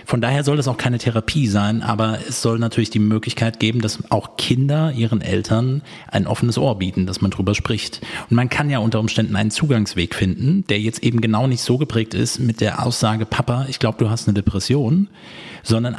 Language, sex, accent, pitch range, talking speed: German, male, German, 105-125 Hz, 210 wpm